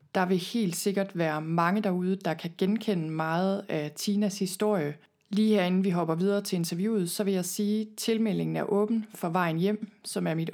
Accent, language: native, Danish